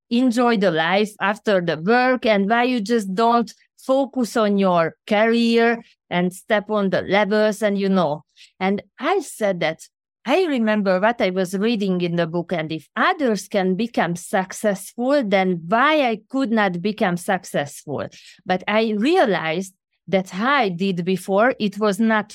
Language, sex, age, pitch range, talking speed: English, female, 30-49, 185-235 Hz, 160 wpm